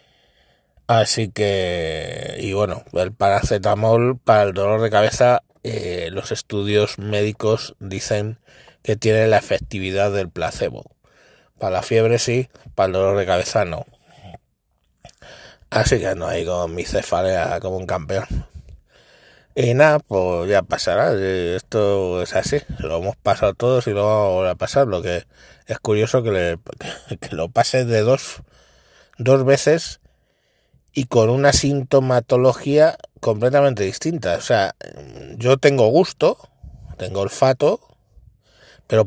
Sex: male